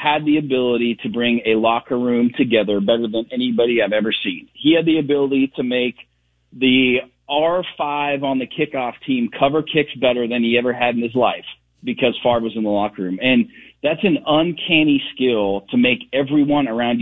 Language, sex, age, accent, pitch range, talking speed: English, male, 40-59, American, 115-150 Hz, 185 wpm